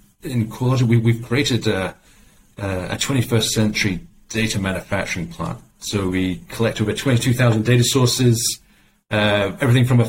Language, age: English, 40-59